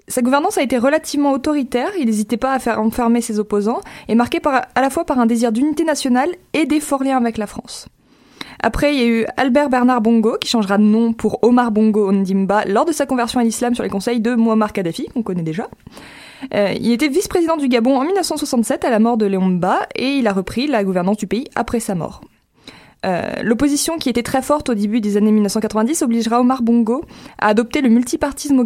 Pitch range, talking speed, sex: 215-265 Hz, 220 wpm, female